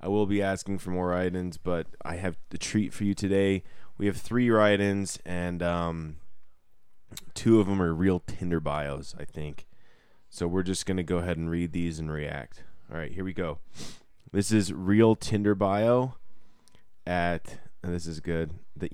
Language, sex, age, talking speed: English, male, 20-39, 180 wpm